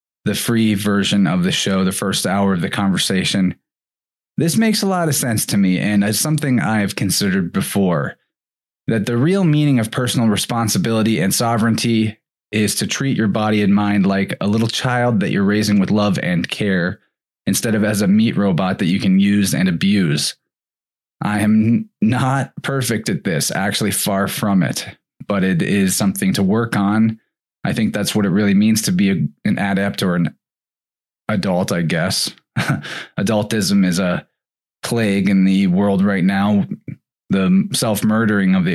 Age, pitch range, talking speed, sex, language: 20-39, 100-130 Hz, 170 wpm, male, English